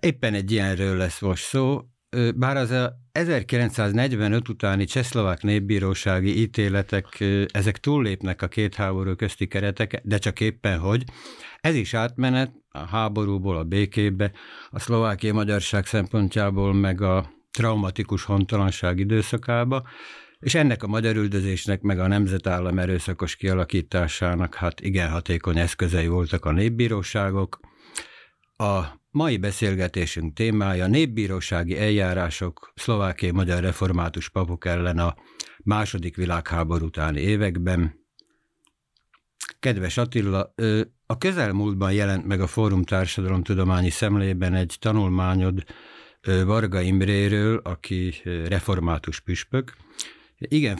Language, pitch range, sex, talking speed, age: Hungarian, 90-110 Hz, male, 110 wpm, 60-79